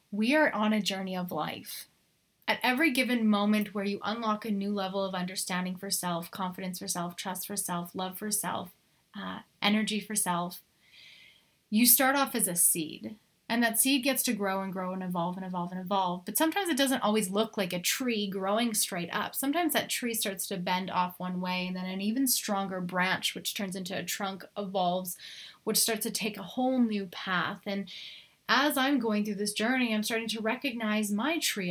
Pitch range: 185-225 Hz